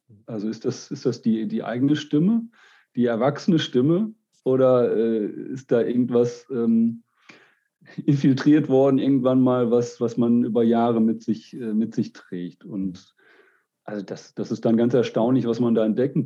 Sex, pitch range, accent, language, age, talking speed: male, 110-130 Hz, German, German, 40-59, 160 wpm